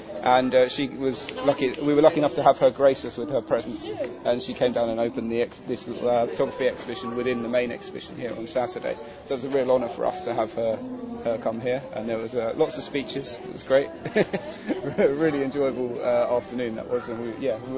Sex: male